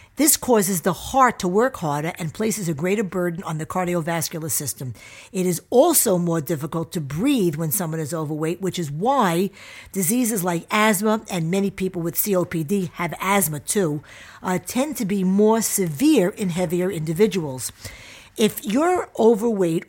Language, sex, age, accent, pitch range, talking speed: English, female, 50-69, American, 165-220 Hz, 160 wpm